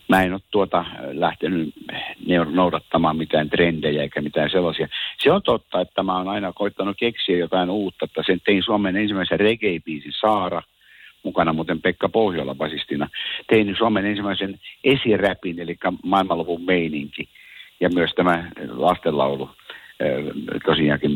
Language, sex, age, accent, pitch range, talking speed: Finnish, male, 60-79, native, 85-105 Hz, 130 wpm